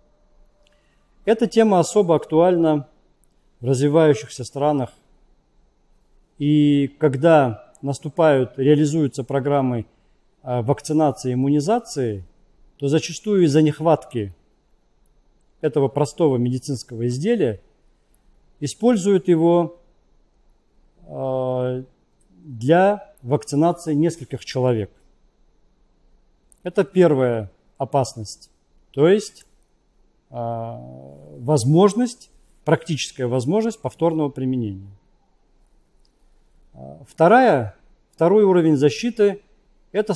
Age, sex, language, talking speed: 40-59, male, Russian, 65 wpm